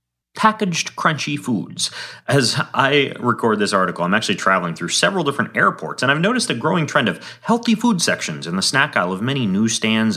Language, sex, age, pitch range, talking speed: English, male, 30-49, 110-180 Hz, 190 wpm